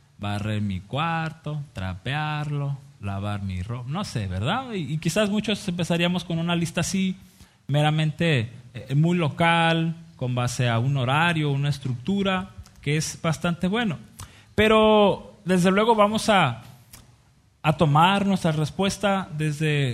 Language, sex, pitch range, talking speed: Spanish, male, 120-175 Hz, 130 wpm